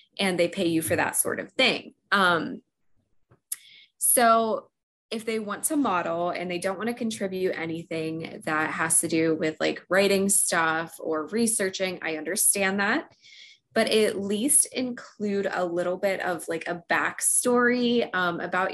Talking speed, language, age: 155 wpm, English, 20-39